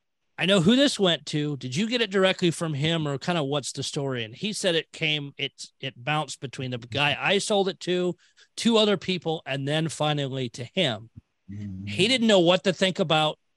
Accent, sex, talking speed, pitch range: American, male, 215 wpm, 135-180 Hz